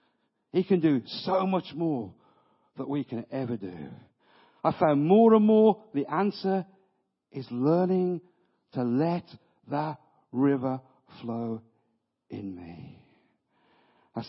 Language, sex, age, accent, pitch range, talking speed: English, male, 50-69, British, 125-190 Hz, 120 wpm